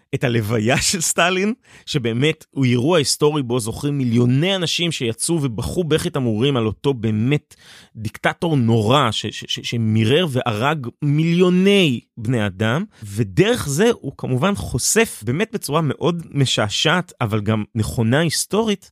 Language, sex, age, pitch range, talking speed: Hebrew, male, 30-49, 115-160 Hz, 135 wpm